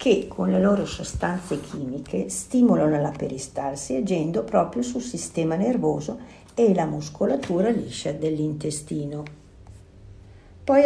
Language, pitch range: Italian, 140-190 Hz